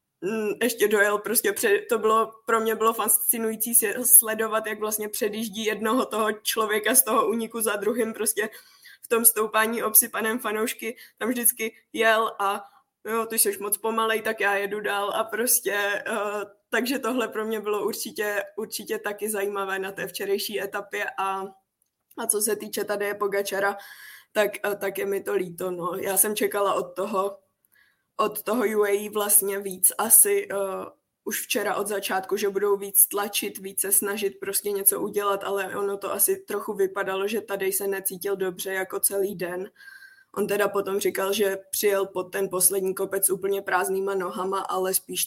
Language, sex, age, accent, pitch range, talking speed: Czech, female, 20-39, native, 195-220 Hz, 165 wpm